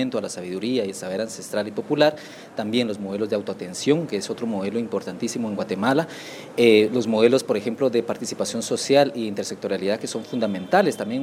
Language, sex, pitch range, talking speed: Spanish, male, 110-155 Hz, 185 wpm